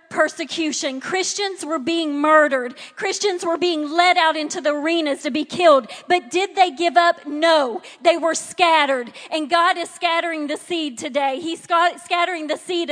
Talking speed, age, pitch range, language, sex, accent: 165 wpm, 40-59, 300-355 Hz, English, female, American